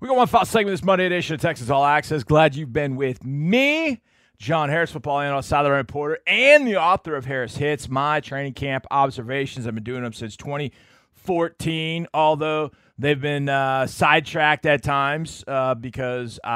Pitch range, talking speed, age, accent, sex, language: 130-165 Hz, 180 wpm, 30-49, American, male, English